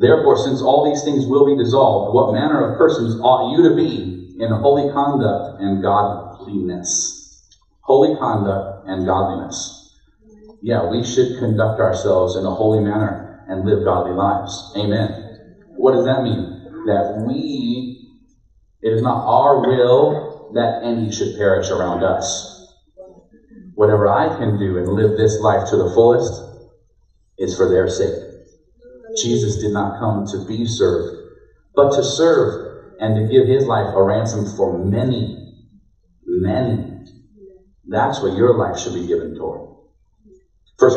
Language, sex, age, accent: English, male, 40-59, American